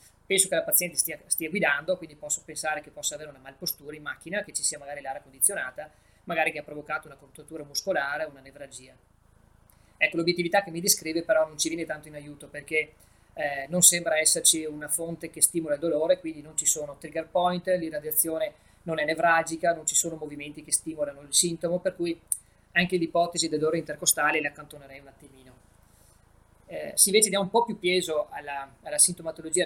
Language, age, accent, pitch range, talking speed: Italian, 20-39, native, 140-170 Hz, 190 wpm